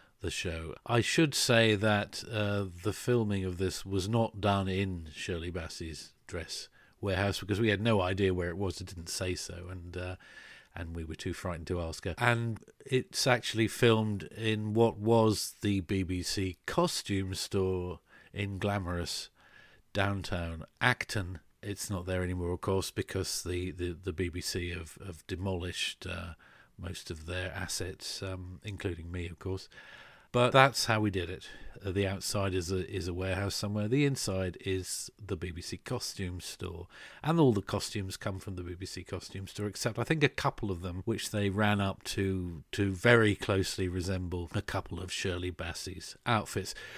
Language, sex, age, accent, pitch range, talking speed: English, male, 50-69, British, 90-105 Hz, 170 wpm